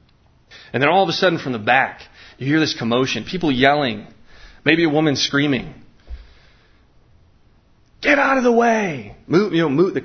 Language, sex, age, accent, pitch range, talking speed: English, male, 30-49, American, 105-135 Hz, 150 wpm